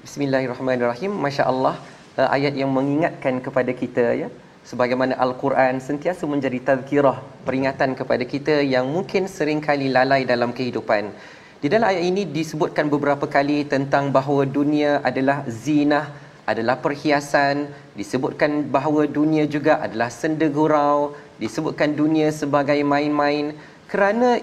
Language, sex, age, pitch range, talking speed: Malayalam, male, 30-49, 145-200 Hz, 120 wpm